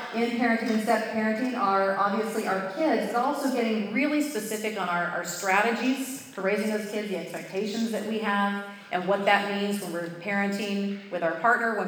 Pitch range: 185-225 Hz